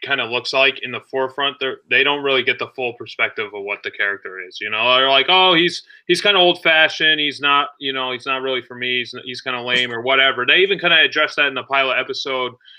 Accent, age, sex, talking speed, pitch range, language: American, 30-49, male, 265 wpm, 125-165 Hz, English